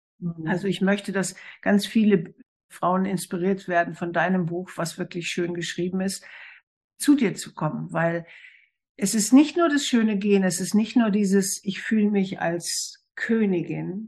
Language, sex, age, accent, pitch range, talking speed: German, female, 60-79, German, 175-220 Hz, 165 wpm